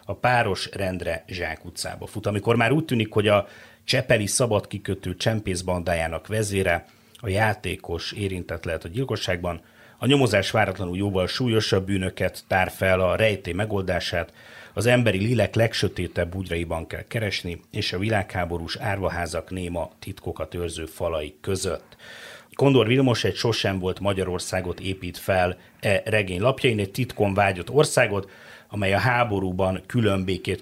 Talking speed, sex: 135 wpm, male